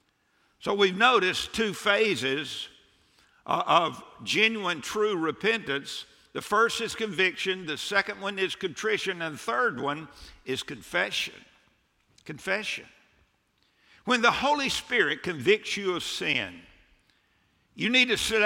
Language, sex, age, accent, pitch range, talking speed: English, male, 60-79, American, 180-230 Hz, 120 wpm